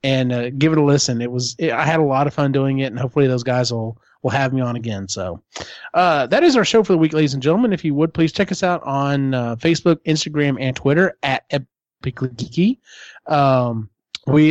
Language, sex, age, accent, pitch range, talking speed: English, male, 30-49, American, 130-160 Hz, 230 wpm